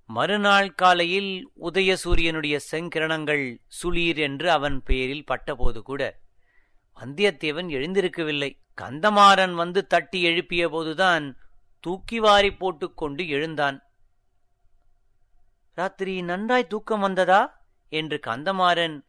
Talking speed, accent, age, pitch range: 90 wpm, native, 30-49, 135-190 Hz